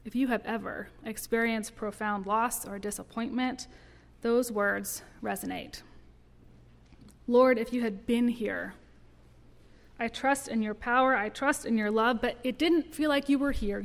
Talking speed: 155 wpm